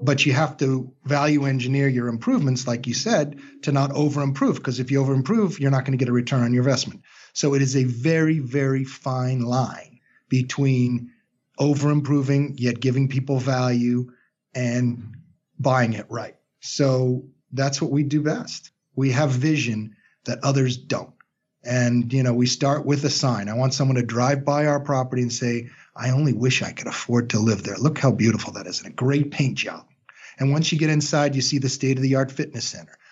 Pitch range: 125-150 Hz